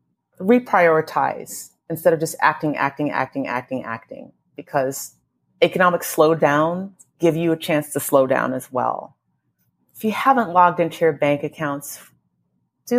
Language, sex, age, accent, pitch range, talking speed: English, female, 30-49, American, 145-185 Hz, 140 wpm